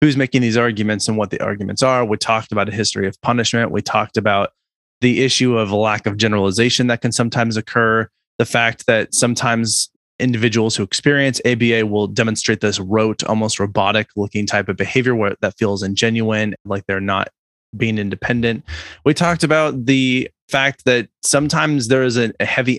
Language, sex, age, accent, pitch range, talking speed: English, male, 20-39, American, 105-125 Hz, 175 wpm